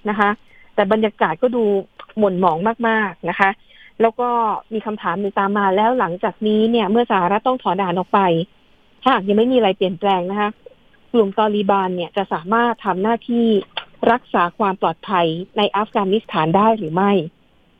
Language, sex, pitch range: Thai, female, 195-235 Hz